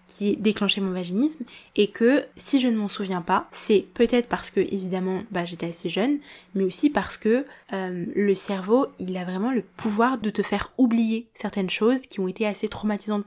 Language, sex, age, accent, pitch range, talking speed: French, female, 20-39, French, 195-230 Hz, 205 wpm